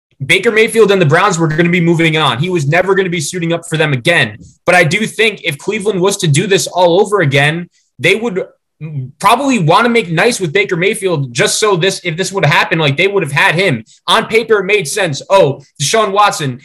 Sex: male